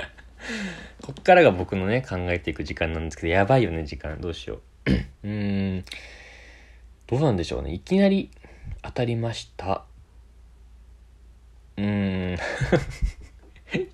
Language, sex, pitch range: Japanese, male, 70-110 Hz